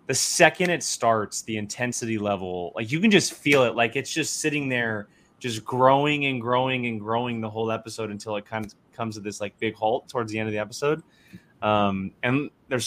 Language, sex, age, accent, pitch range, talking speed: English, male, 20-39, American, 105-130 Hz, 215 wpm